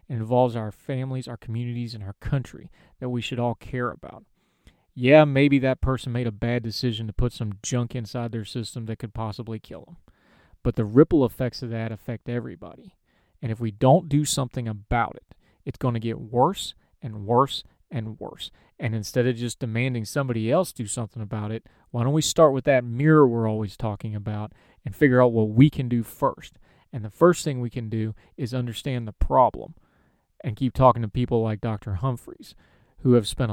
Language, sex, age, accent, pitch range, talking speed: English, male, 40-59, American, 110-130 Hz, 200 wpm